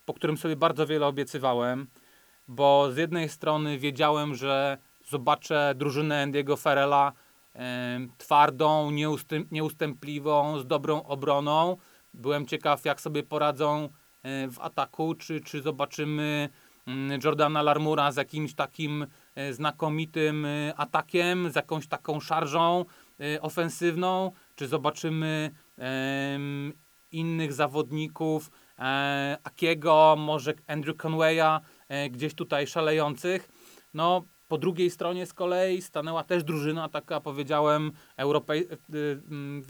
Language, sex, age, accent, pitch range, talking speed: Polish, male, 30-49, native, 145-160 Hz, 100 wpm